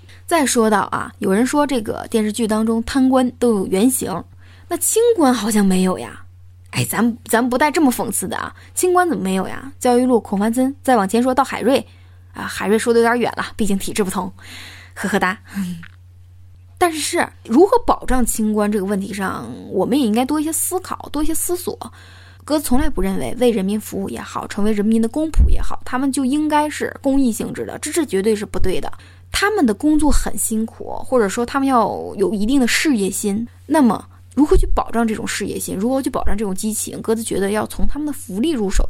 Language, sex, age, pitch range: Chinese, female, 20-39, 195-265 Hz